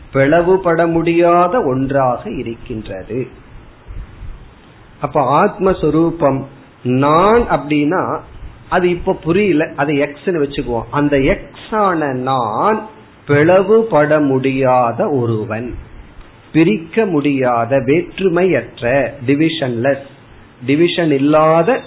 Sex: male